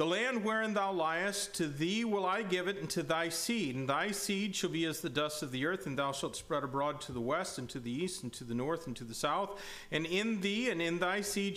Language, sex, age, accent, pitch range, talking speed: English, male, 40-59, American, 145-190 Hz, 275 wpm